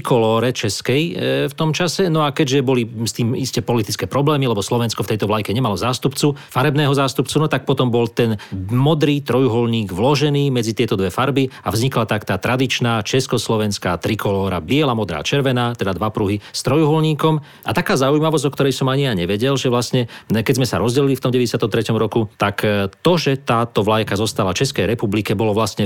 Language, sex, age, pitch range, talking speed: Slovak, male, 40-59, 105-135 Hz, 180 wpm